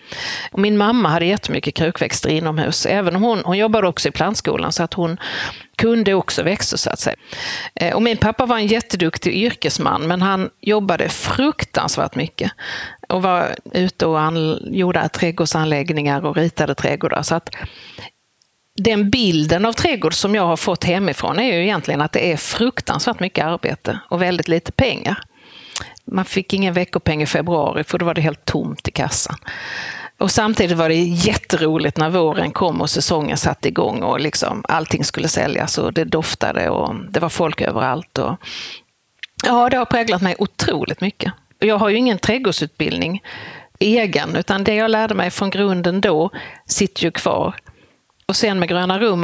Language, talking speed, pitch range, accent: Swedish, 170 wpm, 165-210 Hz, native